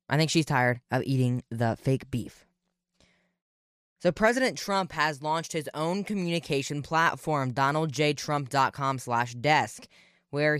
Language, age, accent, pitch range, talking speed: English, 10-29, American, 125-160 Hz, 125 wpm